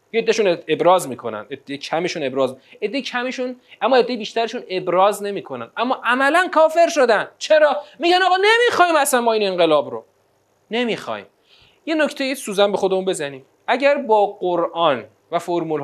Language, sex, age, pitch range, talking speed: Persian, male, 30-49, 150-255 Hz, 150 wpm